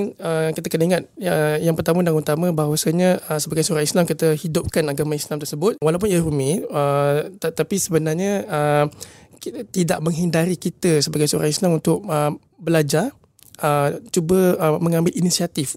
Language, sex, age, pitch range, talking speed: Malay, male, 20-39, 150-180 Hz, 150 wpm